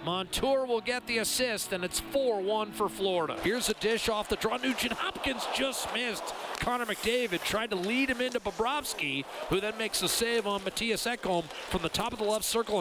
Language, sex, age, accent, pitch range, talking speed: English, male, 40-59, American, 175-235 Hz, 200 wpm